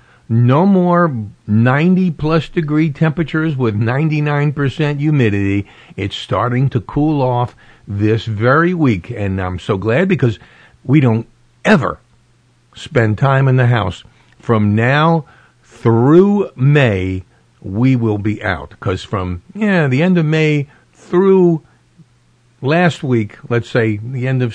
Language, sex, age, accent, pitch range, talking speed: English, male, 50-69, American, 105-135 Hz, 125 wpm